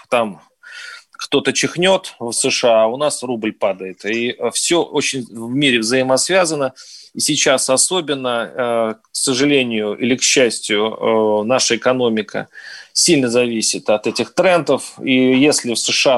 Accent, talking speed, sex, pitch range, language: native, 130 wpm, male, 115-140 Hz, Russian